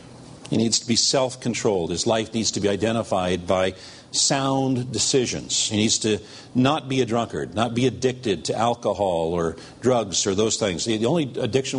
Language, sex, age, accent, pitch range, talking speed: English, male, 50-69, American, 105-130 Hz, 175 wpm